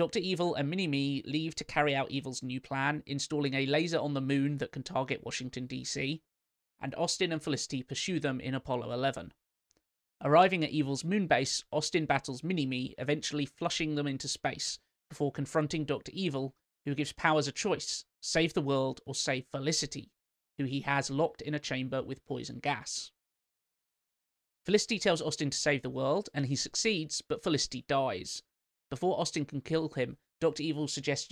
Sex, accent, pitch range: male, British, 135-160 Hz